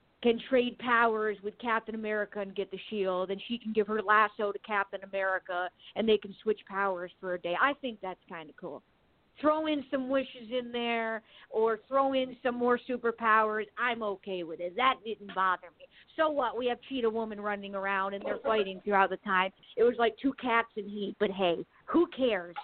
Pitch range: 200-235 Hz